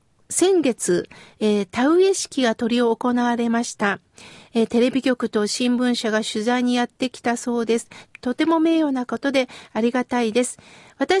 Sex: female